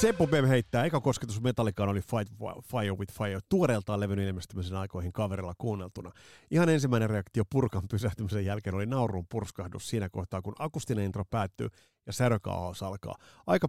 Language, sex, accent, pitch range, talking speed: Finnish, male, native, 100-130 Hz, 160 wpm